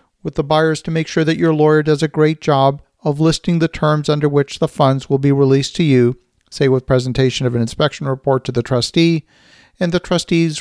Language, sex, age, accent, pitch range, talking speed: English, male, 50-69, American, 135-160 Hz, 220 wpm